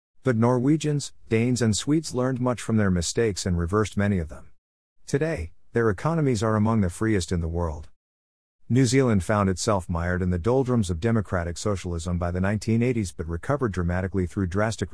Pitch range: 85-115 Hz